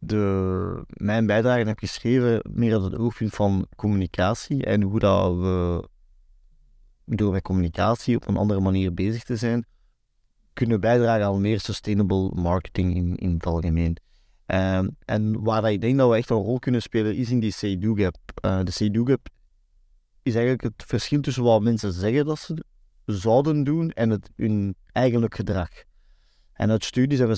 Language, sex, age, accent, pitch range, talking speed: Dutch, male, 30-49, Dutch, 100-120 Hz, 165 wpm